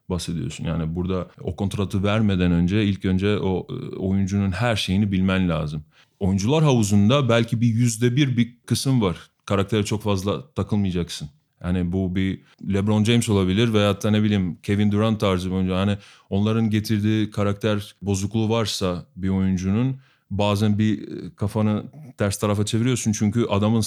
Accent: native